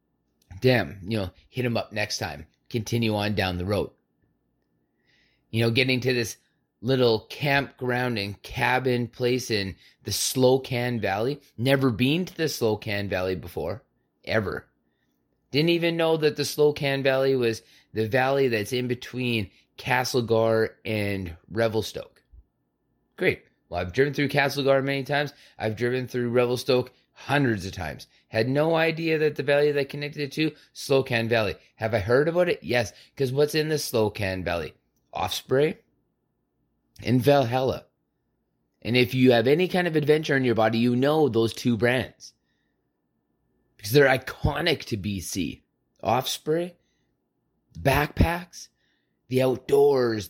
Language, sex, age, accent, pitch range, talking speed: English, male, 30-49, American, 110-140 Hz, 140 wpm